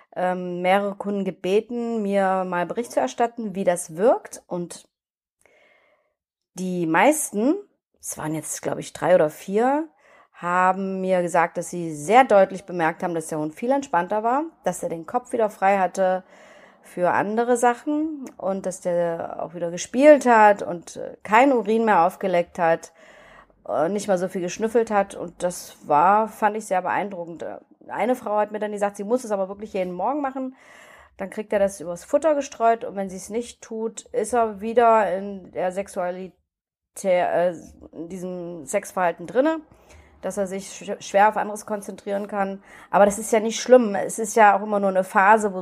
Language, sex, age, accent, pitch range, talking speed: German, female, 30-49, German, 180-225 Hz, 175 wpm